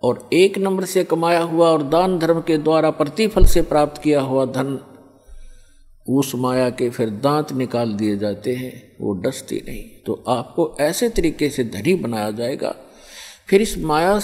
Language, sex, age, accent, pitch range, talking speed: Hindi, male, 50-69, native, 135-175 Hz, 170 wpm